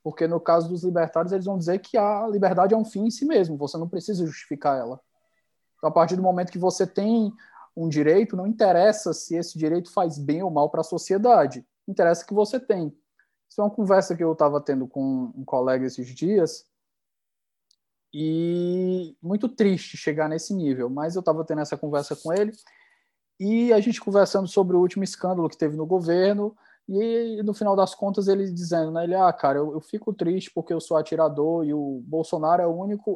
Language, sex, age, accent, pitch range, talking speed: Portuguese, male, 20-39, Brazilian, 155-205 Hz, 205 wpm